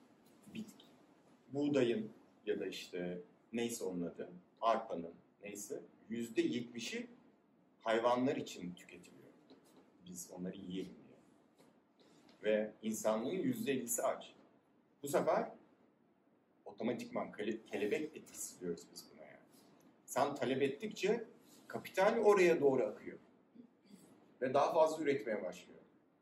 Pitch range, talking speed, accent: 115-195 Hz, 100 wpm, native